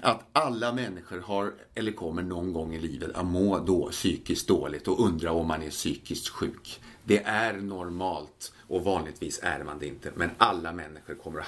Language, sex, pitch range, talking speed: English, male, 85-110 Hz, 190 wpm